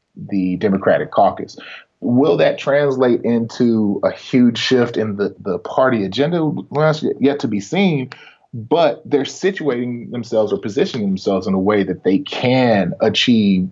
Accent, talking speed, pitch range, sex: American, 155 wpm, 105-150 Hz, male